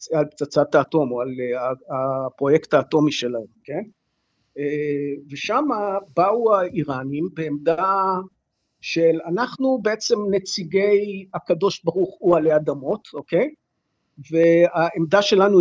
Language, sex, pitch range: Hebrew, male, 165-235 Hz